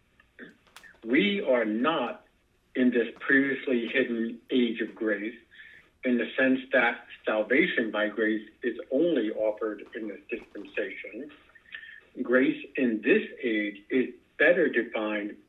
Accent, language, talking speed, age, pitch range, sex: American, English, 115 wpm, 60-79, 110-135 Hz, male